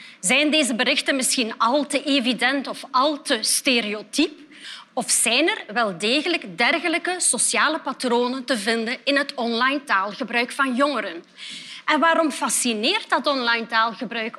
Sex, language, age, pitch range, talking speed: female, Dutch, 30-49, 230-305 Hz, 140 wpm